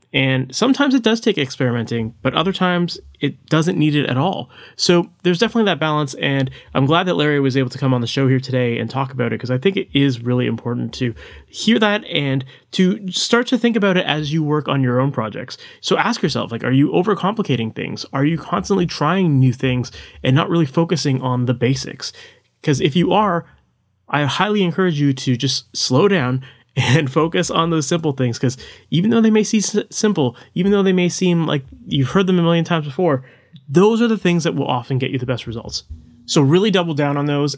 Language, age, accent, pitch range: English, 30-49, American, 130-180 Hz